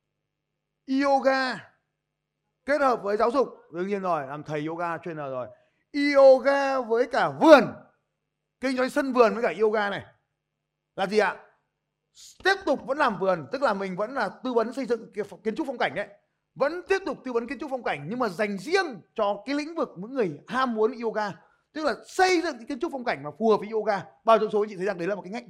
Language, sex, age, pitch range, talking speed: Vietnamese, male, 20-39, 180-260 Hz, 220 wpm